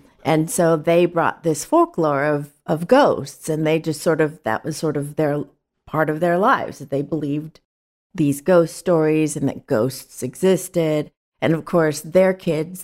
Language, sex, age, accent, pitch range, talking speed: English, female, 40-59, American, 140-170 Hz, 180 wpm